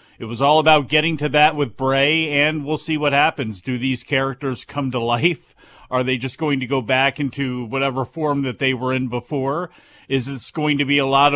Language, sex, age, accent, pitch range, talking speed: English, male, 40-59, American, 135-165 Hz, 220 wpm